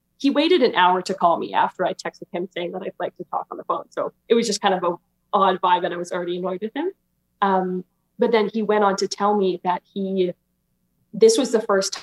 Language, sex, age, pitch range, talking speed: English, female, 20-39, 175-205 Hz, 255 wpm